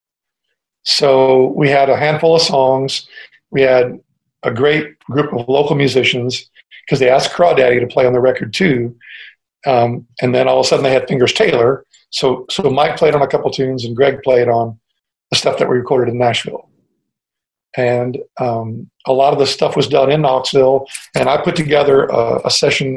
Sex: male